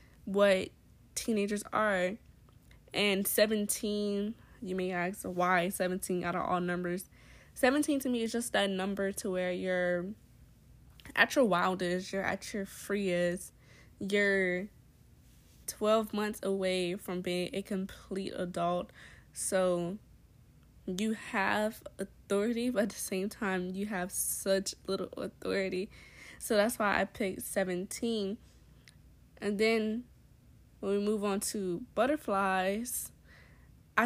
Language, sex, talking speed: English, female, 120 wpm